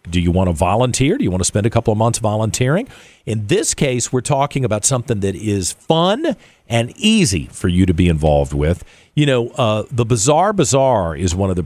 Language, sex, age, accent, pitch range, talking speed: English, male, 50-69, American, 95-130 Hz, 220 wpm